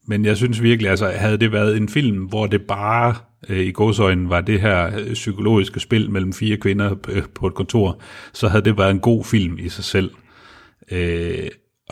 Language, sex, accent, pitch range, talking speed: Danish, male, native, 95-110 Hz, 195 wpm